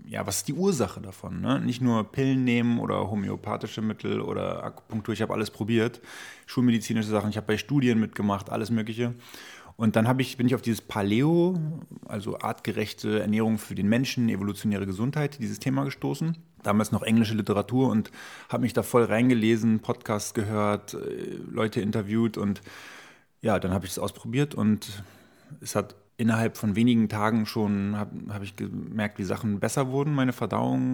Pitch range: 105-125 Hz